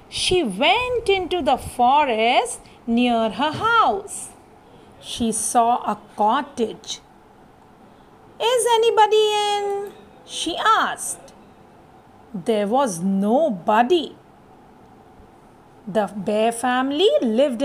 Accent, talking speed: Indian, 80 wpm